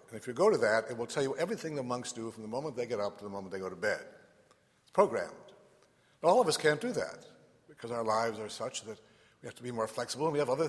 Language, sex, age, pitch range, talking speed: English, male, 60-79, 110-140 Hz, 290 wpm